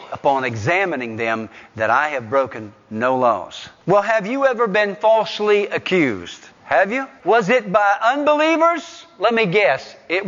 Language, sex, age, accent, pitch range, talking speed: English, male, 50-69, American, 140-215 Hz, 150 wpm